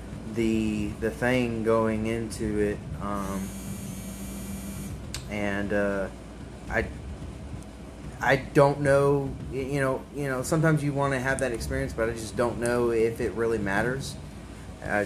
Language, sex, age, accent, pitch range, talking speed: English, male, 20-39, American, 100-120 Hz, 135 wpm